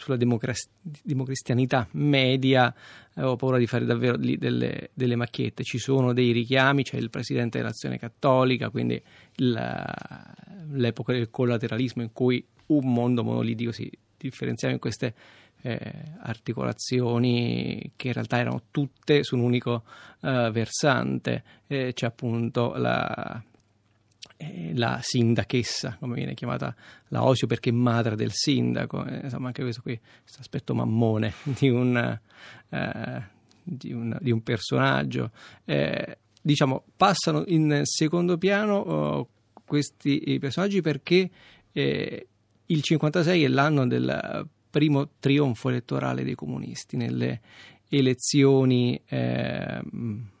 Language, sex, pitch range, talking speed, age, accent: Italian, male, 115-140 Hz, 125 wpm, 30-49, native